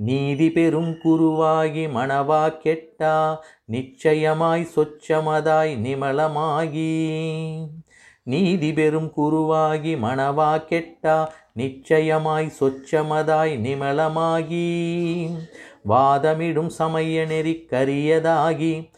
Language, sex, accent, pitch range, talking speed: Tamil, male, native, 150-165 Hz, 60 wpm